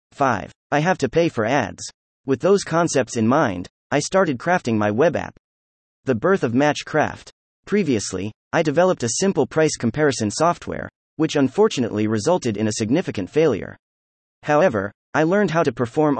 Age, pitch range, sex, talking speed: 30-49, 110-160 Hz, male, 160 wpm